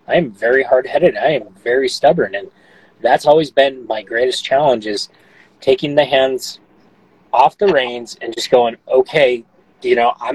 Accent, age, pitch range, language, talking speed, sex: American, 30-49, 125-190 Hz, English, 170 wpm, male